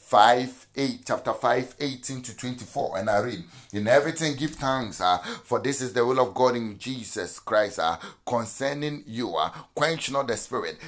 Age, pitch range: 30-49, 115-140 Hz